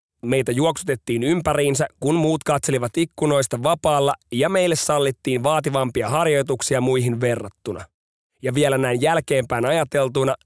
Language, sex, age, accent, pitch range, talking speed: Finnish, male, 30-49, native, 120-150 Hz, 115 wpm